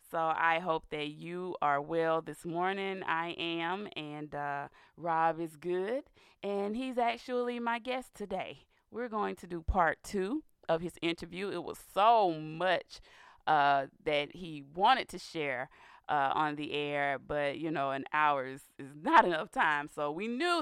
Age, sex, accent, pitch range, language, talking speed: 20-39, female, American, 150-175 Hz, English, 165 wpm